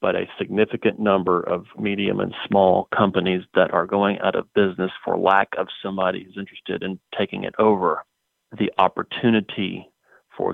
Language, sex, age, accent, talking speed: English, male, 40-59, American, 160 wpm